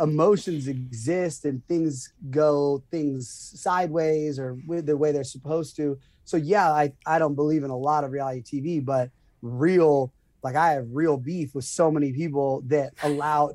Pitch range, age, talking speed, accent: 135-165 Hz, 30-49, 175 wpm, American